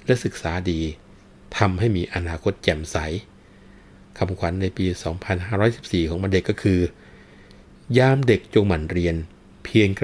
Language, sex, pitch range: Thai, male, 85-105 Hz